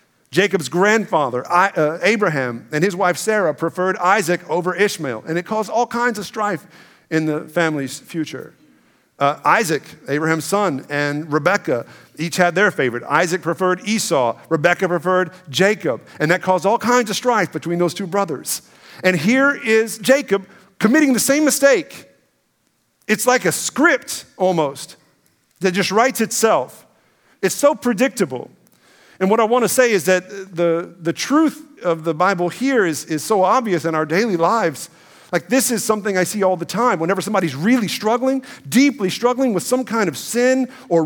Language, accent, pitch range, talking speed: English, American, 165-235 Hz, 165 wpm